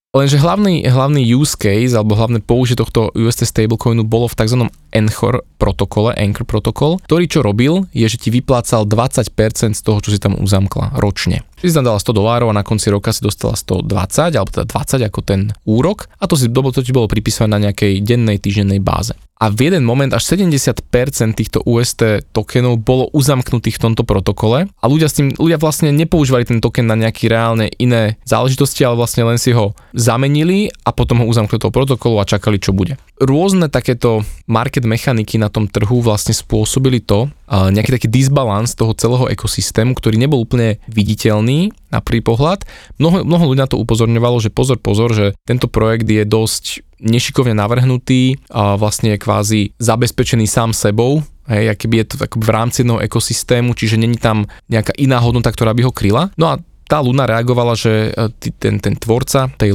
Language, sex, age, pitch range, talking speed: Slovak, male, 20-39, 110-130 Hz, 180 wpm